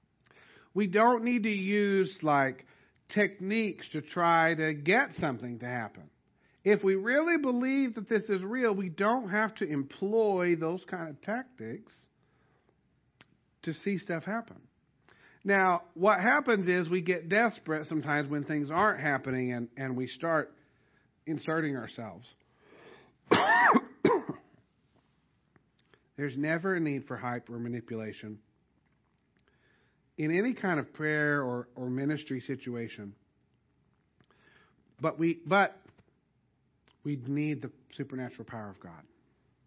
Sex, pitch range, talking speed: male, 135-200 Hz, 120 wpm